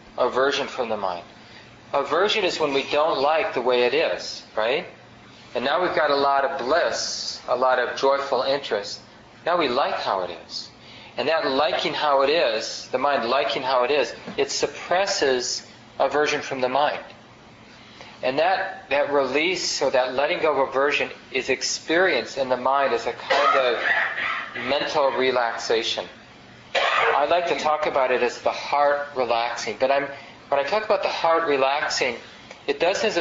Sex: male